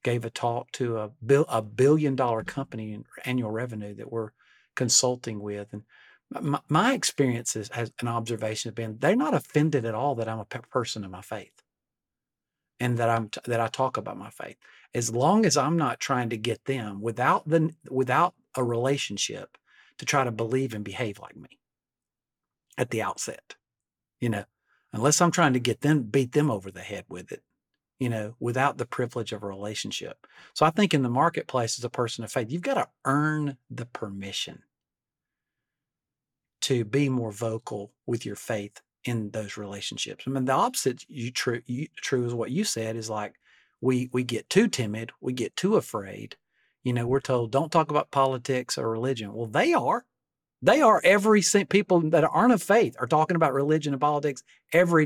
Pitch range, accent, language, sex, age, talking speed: 115-145 Hz, American, English, male, 50-69, 190 wpm